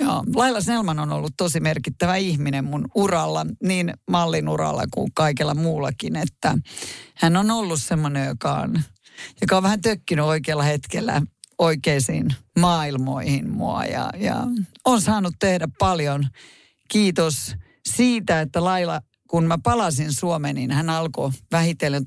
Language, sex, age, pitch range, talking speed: Finnish, female, 50-69, 140-190 Hz, 135 wpm